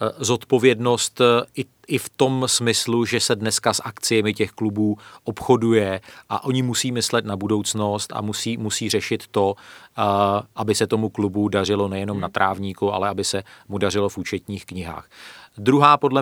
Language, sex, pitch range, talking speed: Czech, male, 100-115 Hz, 155 wpm